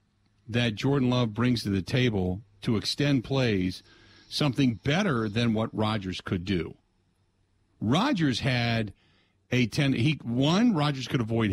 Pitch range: 100-145 Hz